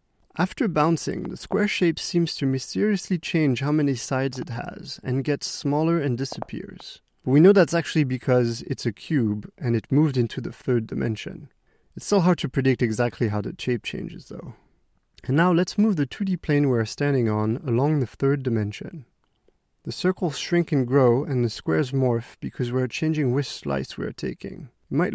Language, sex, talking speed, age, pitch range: English, male, 185 wpm, 30-49, 125-170 Hz